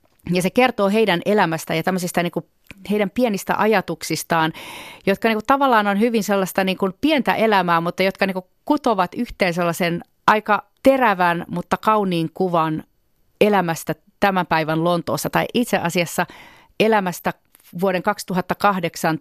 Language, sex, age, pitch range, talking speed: Finnish, female, 30-49, 165-195 Hz, 115 wpm